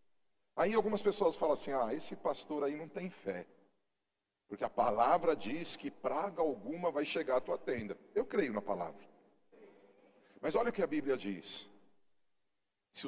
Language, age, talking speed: Portuguese, 40-59, 165 wpm